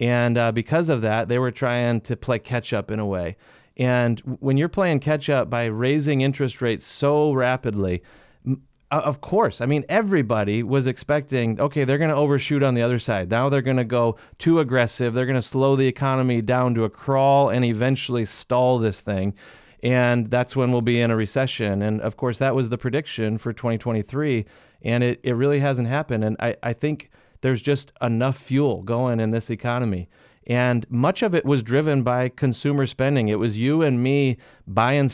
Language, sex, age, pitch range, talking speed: English, male, 40-59, 115-135 Hz, 195 wpm